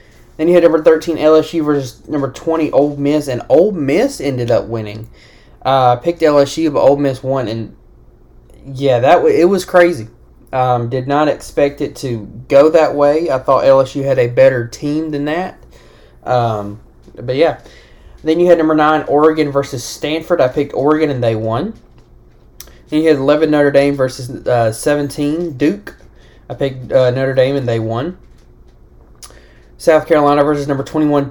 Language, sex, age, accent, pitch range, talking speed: English, male, 20-39, American, 115-150 Hz, 175 wpm